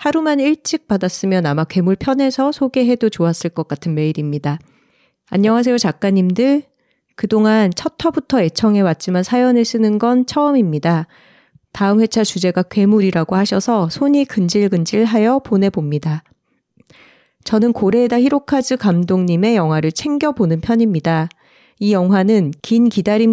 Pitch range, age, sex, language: 175-240 Hz, 40-59, female, Korean